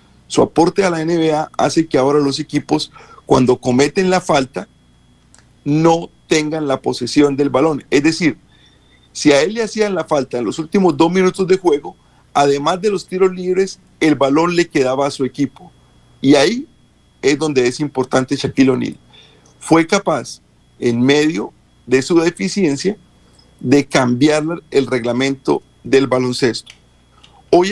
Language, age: Spanish, 40-59